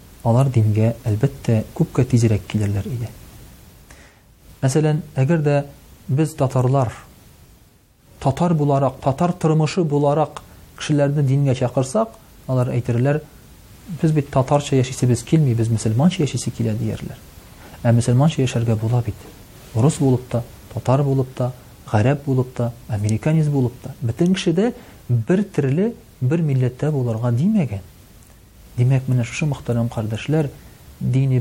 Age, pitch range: 40-59, 110-140 Hz